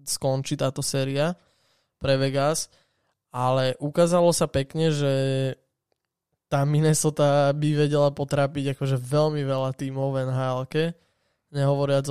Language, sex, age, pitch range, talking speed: Slovak, male, 20-39, 135-155 Hz, 105 wpm